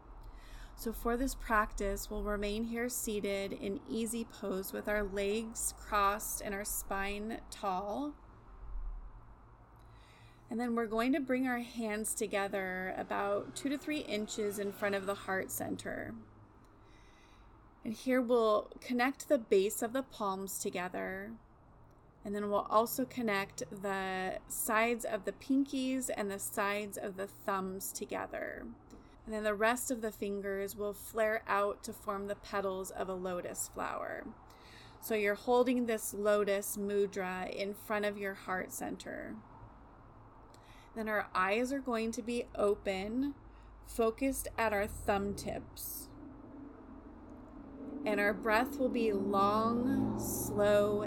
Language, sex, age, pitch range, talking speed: English, female, 30-49, 195-230 Hz, 135 wpm